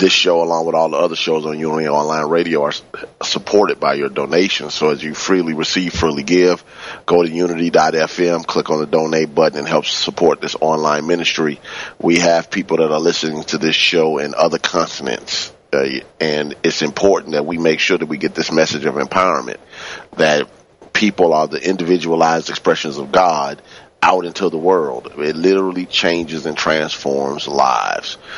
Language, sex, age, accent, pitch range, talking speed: English, male, 30-49, American, 75-85 Hz, 175 wpm